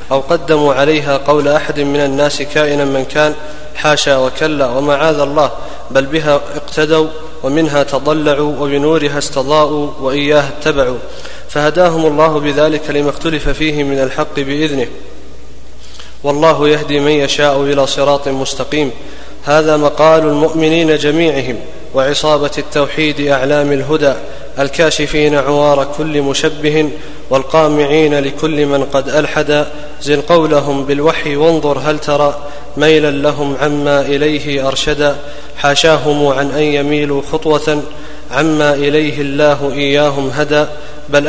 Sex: male